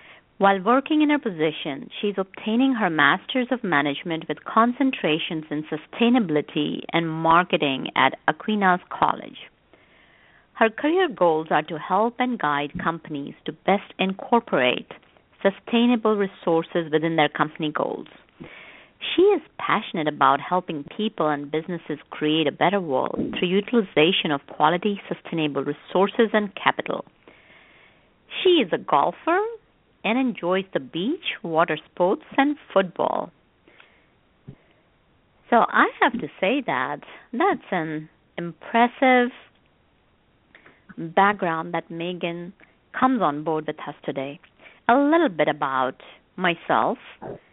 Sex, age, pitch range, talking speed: female, 50-69, 160-230 Hz, 115 wpm